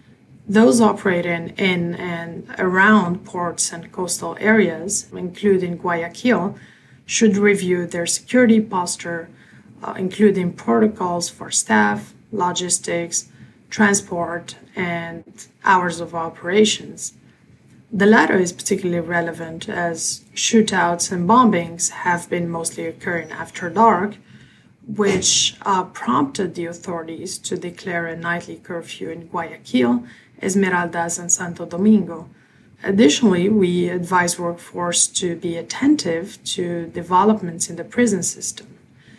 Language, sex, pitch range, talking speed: English, female, 170-200 Hz, 110 wpm